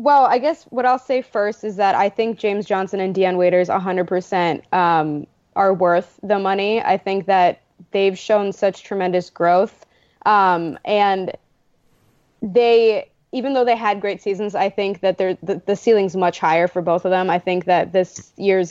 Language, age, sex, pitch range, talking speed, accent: English, 20-39, female, 185-225 Hz, 180 wpm, American